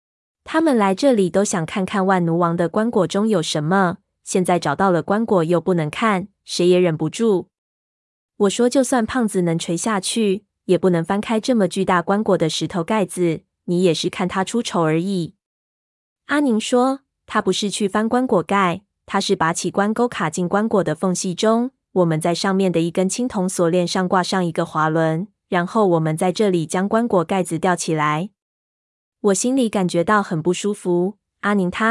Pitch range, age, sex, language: 175-205 Hz, 20-39, female, Chinese